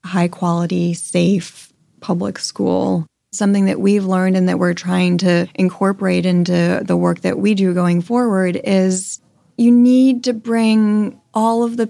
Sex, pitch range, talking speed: female, 180-205 Hz, 150 wpm